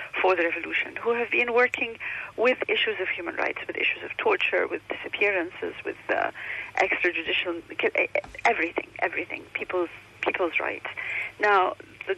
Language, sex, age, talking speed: Italian, female, 40-59, 140 wpm